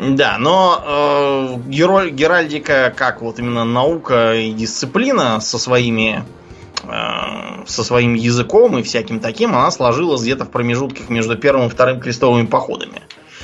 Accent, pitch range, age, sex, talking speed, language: native, 115-140 Hz, 20-39, male, 140 wpm, Russian